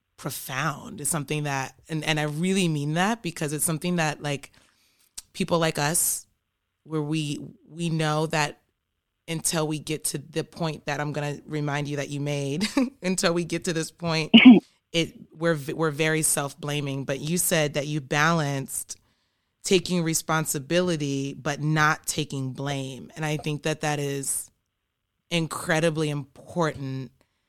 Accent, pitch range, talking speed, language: American, 140-165 Hz, 150 wpm, English